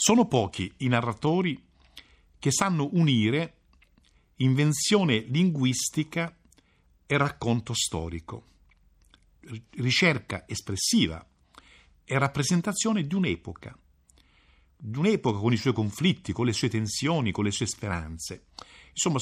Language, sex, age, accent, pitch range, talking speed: Italian, male, 50-69, native, 90-140 Hz, 105 wpm